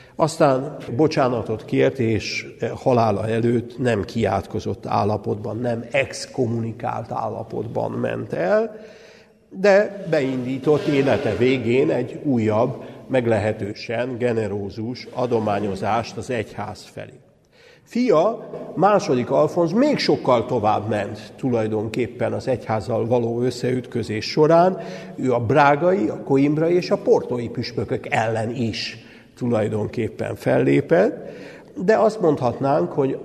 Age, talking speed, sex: 60-79, 100 wpm, male